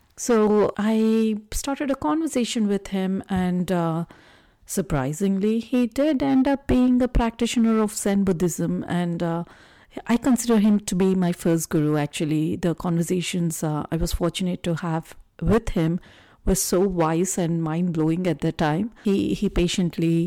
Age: 50-69